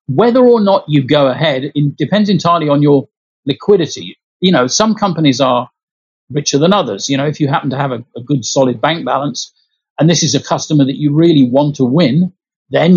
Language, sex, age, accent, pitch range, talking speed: English, male, 50-69, British, 135-170 Hz, 210 wpm